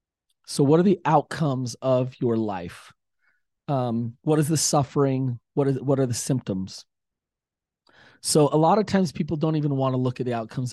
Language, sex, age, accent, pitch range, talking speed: English, male, 30-49, American, 115-145 Hz, 185 wpm